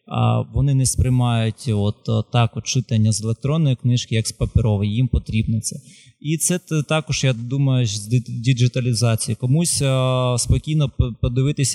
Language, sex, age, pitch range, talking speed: Ukrainian, male, 20-39, 115-130 Hz, 140 wpm